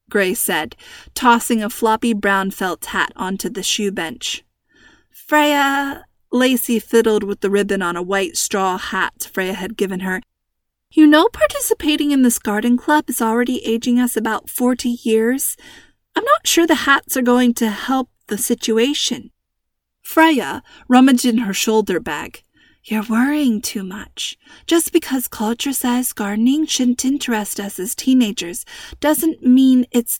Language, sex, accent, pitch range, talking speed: English, female, American, 205-265 Hz, 150 wpm